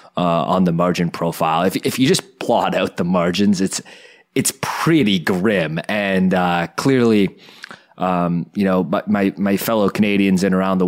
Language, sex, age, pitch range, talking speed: English, male, 20-39, 85-100 Hz, 160 wpm